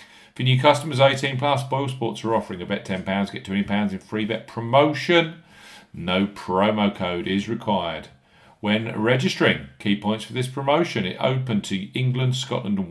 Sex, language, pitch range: male, English, 105-130 Hz